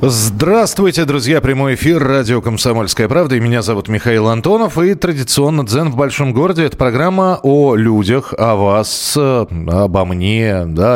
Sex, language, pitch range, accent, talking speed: male, Russian, 110-150 Hz, native, 140 wpm